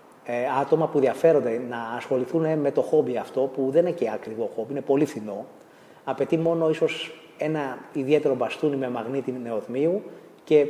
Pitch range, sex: 130-160 Hz, male